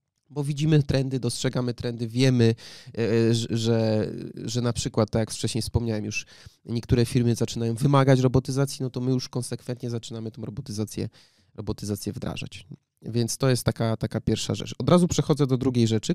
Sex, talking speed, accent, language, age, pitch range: male, 160 wpm, native, Polish, 20-39, 115-140 Hz